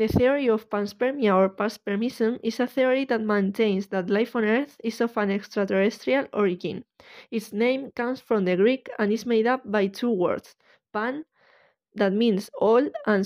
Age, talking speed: 20-39, 170 wpm